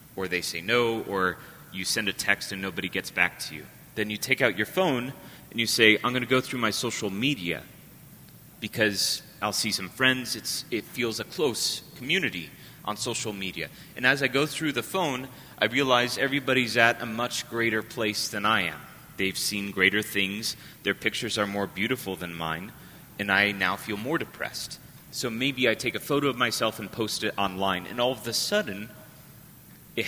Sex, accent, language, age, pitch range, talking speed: male, American, English, 30-49, 100-125 Hz, 200 wpm